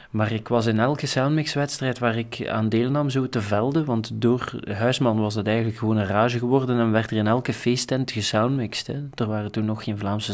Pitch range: 110-130 Hz